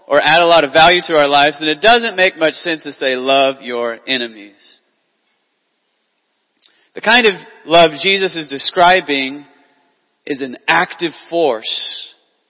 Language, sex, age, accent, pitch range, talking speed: English, male, 30-49, American, 140-175 Hz, 150 wpm